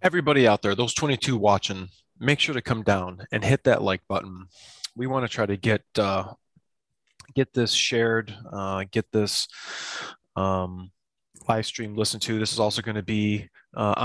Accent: American